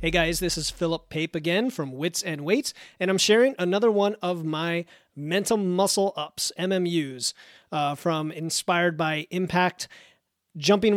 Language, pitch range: English, 160-190 Hz